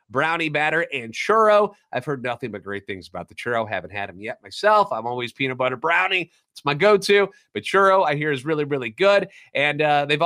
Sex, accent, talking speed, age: male, American, 220 wpm, 30-49